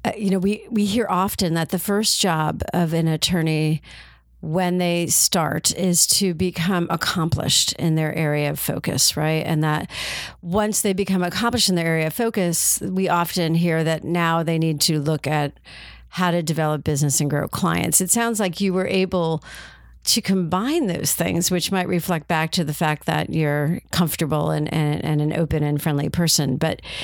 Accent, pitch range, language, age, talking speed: American, 160-195 Hz, English, 50-69, 185 wpm